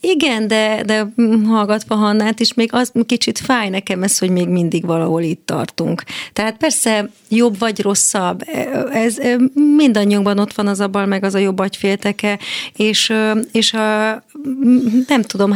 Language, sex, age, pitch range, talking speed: Hungarian, female, 30-49, 195-225 Hz, 150 wpm